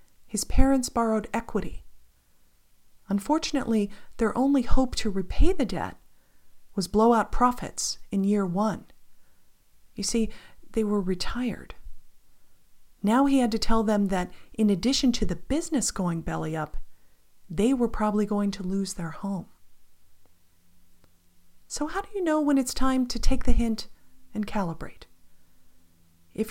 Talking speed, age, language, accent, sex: 140 wpm, 40-59, English, American, female